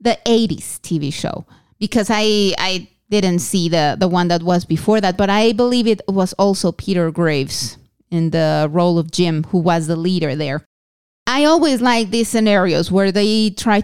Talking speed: 180 wpm